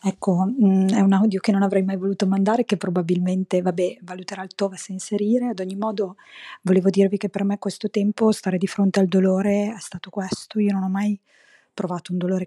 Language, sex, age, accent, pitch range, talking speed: Italian, female, 20-39, native, 185-210 Hz, 200 wpm